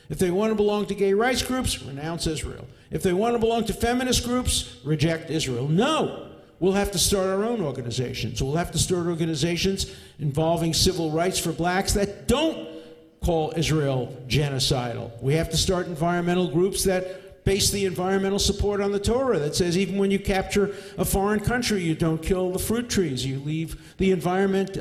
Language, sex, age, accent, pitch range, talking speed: English, male, 50-69, American, 155-205 Hz, 185 wpm